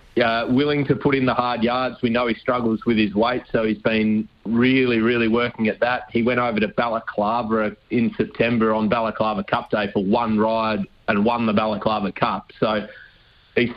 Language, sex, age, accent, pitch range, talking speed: English, male, 30-49, Australian, 110-120 Hz, 190 wpm